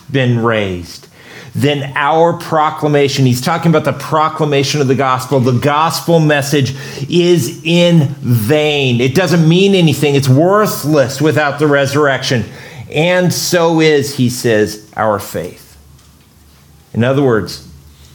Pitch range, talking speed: 105-145 Hz, 125 wpm